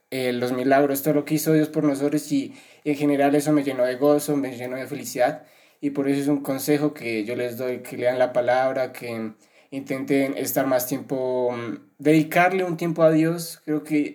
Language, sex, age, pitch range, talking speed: Spanish, male, 20-39, 130-150 Hz, 210 wpm